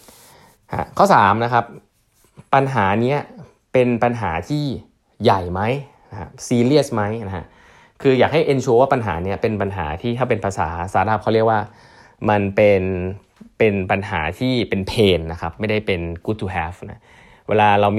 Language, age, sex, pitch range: Thai, 20-39, male, 95-120 Hz